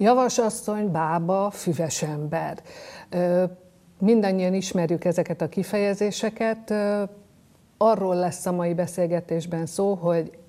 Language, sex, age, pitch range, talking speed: Hungarian, female, 50-69, 165-180 Hz, 90 wpm